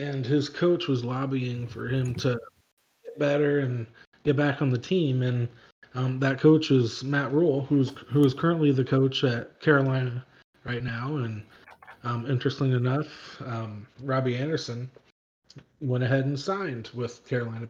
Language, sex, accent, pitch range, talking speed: English, male, American, 125-150 Hz, 160 wpm